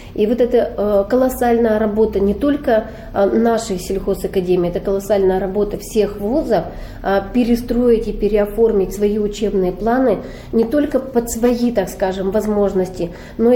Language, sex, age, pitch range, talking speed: Russian, female, 30-49, 195-235 Hz, 125 wpm